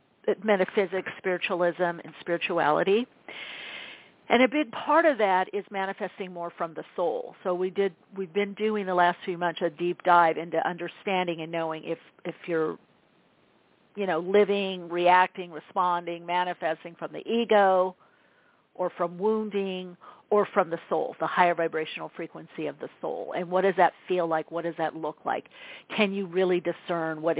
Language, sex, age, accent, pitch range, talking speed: English, female, 50-69, American, 170-200 Hz, 165 wpm